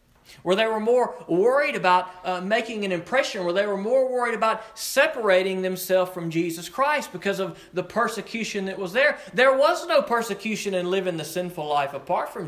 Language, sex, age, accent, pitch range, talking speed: English, male, 40-59, American, 185-255 Hz, 190 wpm